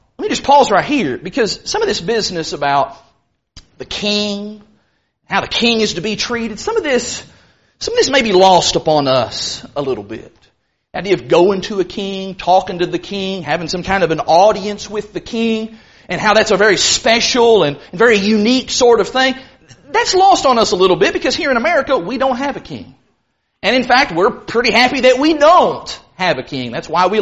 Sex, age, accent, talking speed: male, 30-49, American, 215 wpm